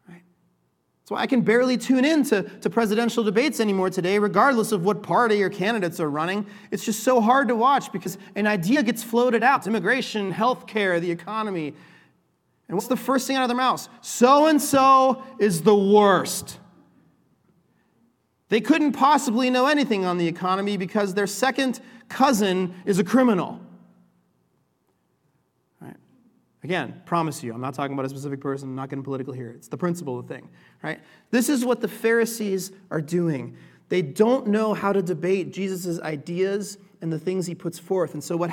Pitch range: 170-230 Hz